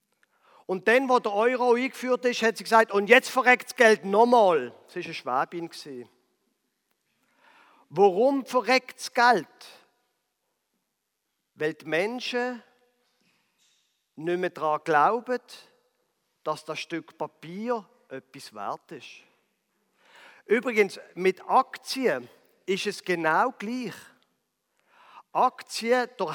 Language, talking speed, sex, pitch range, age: German, 105 wpm, male, 195-250 Hz, 50-69